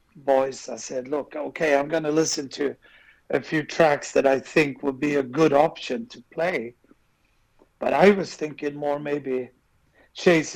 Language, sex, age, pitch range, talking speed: English, male, 60-79, 140-175 Hz, 170 wpm